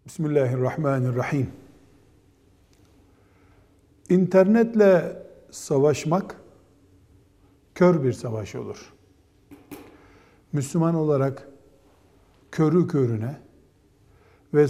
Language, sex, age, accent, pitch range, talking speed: Turkish, male, 60-79, native, 100-165 Hz, 50 wpm